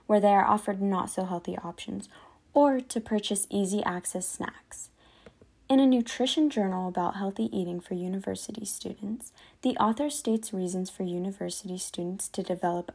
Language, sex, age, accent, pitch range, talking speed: English, female, 10-29, American, 180-215 Hz, 140 wpm